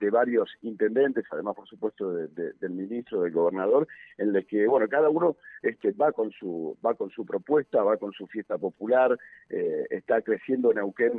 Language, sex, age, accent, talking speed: Spanish, male, 50-69, Argentinian, 190 wpm